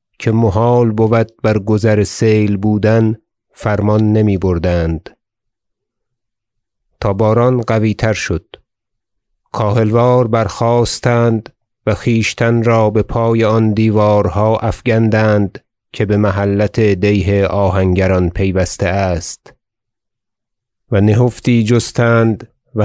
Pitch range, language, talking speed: 100-115 Hz, Persian, 95 wpm